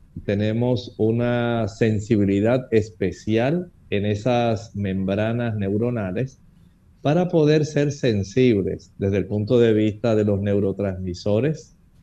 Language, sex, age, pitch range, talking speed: Spanish, male, 50-69, 110-140 Hz, 100 wpm